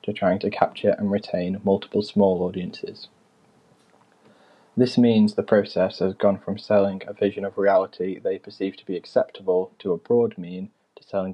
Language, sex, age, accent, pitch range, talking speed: English, male, 20-39, British, 95-110 Hz, 170 wpm